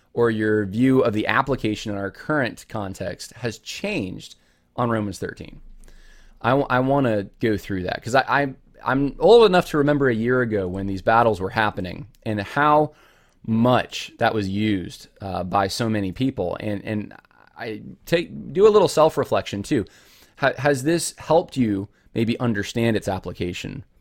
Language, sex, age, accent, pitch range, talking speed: English, male, 20-39, American, 95-125 Hz, 160 wpm